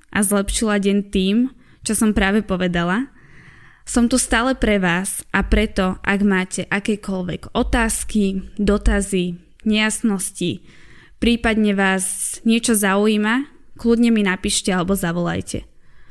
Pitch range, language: 190-230 Hz, Slovak